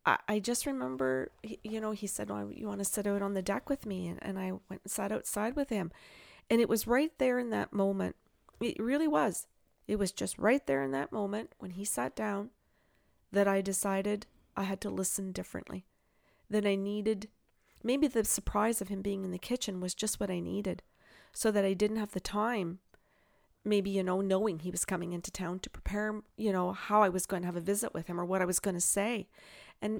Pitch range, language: 185-220 Hz, English